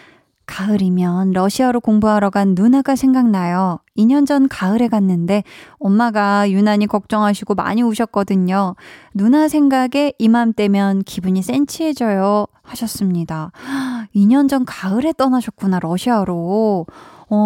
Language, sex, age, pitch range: Korean, female, 20-39, 190-245 Hz